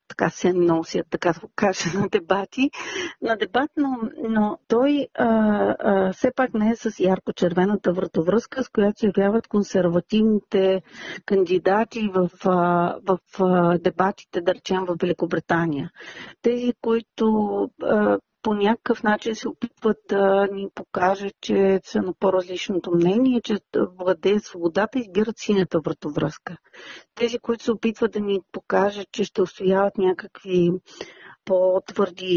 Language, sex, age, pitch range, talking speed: Bulgarian, female, 40-59, 185-225 Hz, 135 wpm